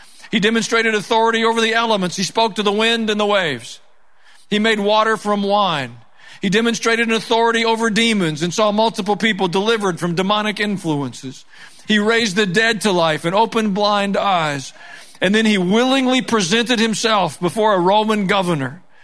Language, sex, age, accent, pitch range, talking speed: English, male, 50-69, American, 175-230 Hz, 165 wpm